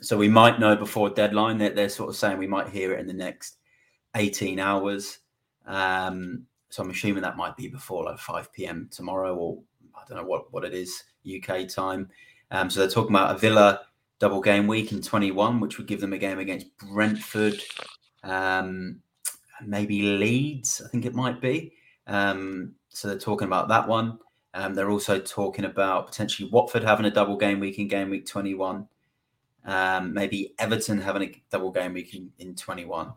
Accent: British